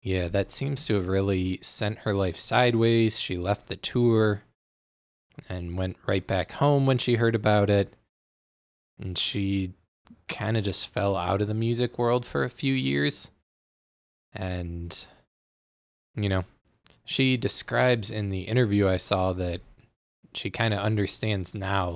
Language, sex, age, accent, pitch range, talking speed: English, male, 20-39, American, 95-115 Hz, 150 wpm